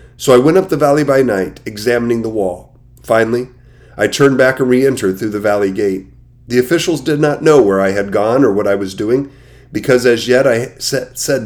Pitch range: 105-130 Hz